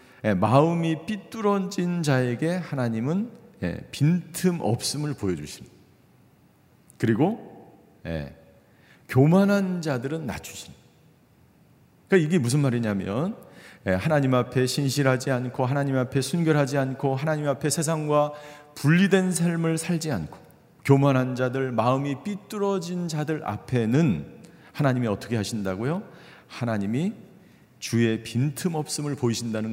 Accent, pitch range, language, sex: native, 125-165 Hz, Korean, male